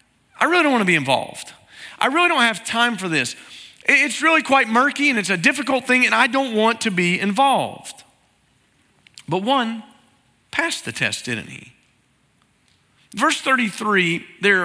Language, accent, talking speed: English, American, 160 wpm